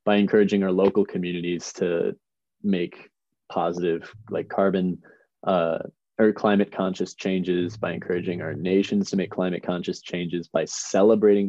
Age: 20-39